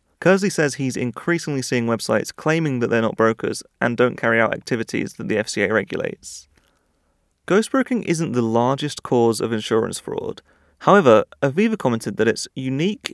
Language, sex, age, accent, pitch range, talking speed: English, male, 30-49, British, 115-160 Hz, 155 wpm